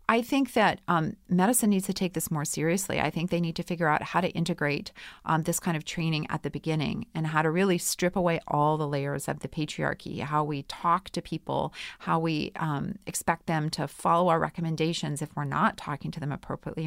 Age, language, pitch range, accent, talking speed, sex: 30-49, English, 160-195 Hz, American, 220 wpm, female